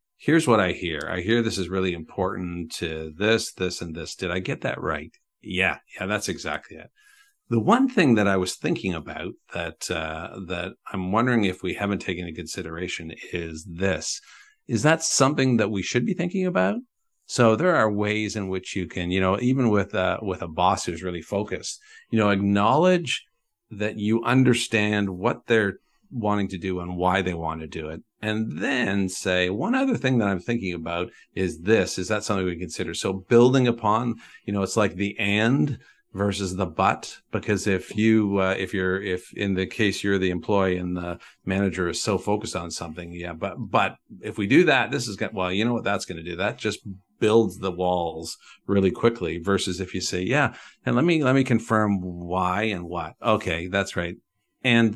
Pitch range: 90-115 Hz